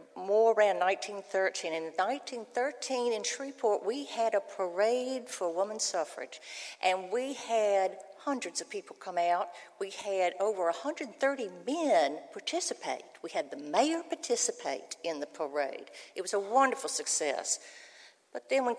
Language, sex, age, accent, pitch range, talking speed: English, female, 60-79, American, 180-265 Hz, 140 wpm